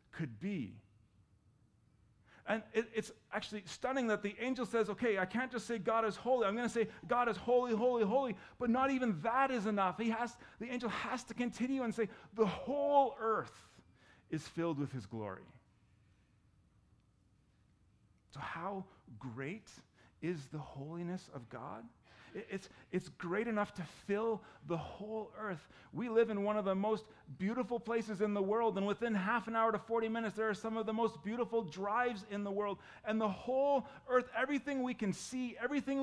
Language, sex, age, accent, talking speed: English, male, 40-59, American, 180 wpm